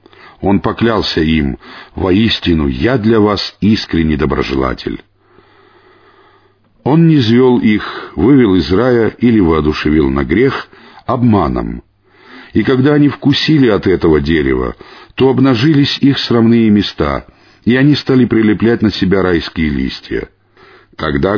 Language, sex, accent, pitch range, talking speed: Russian, male, native, 85-115 Hz, 120 wpm